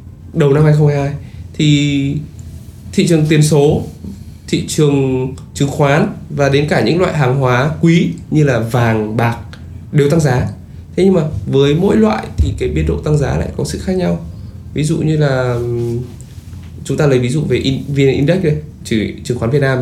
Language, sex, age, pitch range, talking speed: Vietnamese, male, 20-39, 110-150 Hz, 190 wpm